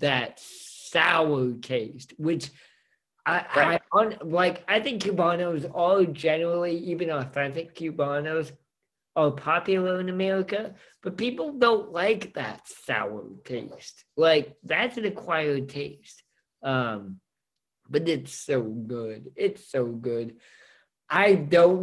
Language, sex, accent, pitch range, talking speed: English, male, American, 125-165 Hz, 115 wpm